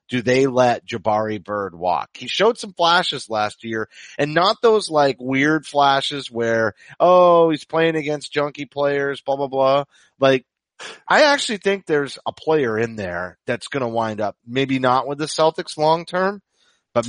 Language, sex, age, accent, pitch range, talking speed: English, male, 30-49, American, 110-145 Hz, 175 wpm